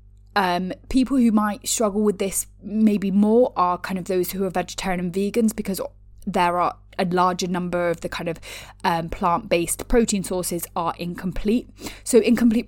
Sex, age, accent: female, 20-39, British